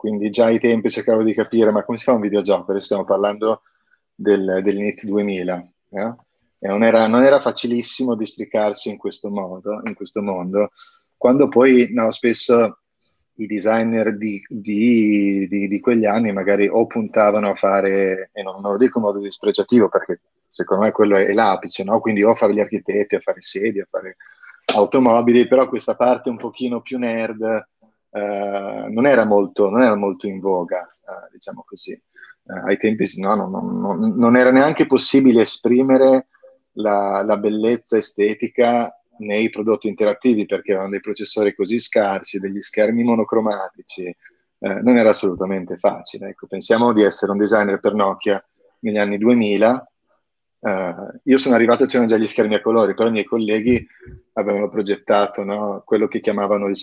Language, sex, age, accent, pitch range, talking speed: Italian, male, 30-49, native, 100-120 Hz, 155 wpm